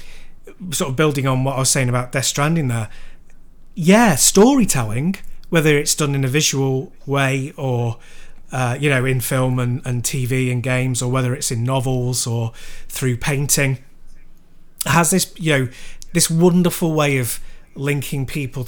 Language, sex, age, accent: English, male, 30-49, British